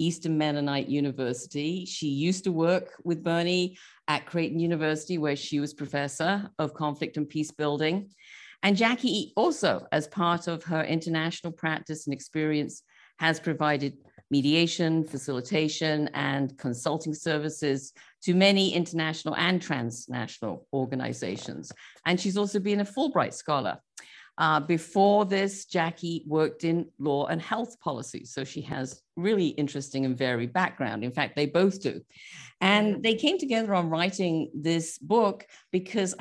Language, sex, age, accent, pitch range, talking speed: English, female, 50-69, British, 140-175 Hz, 140 wpm